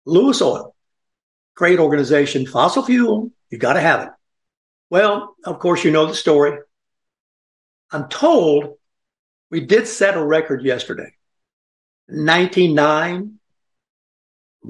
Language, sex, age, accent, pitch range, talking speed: English, male, 60-79, American, 135-170 Hz, 110 wpm